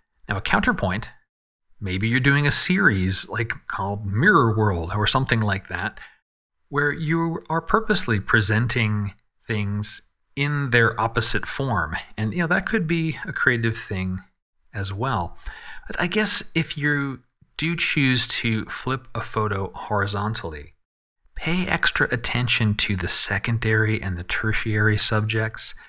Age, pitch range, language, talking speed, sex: 40-59, 105-130 Hz, English, 135 wpm, male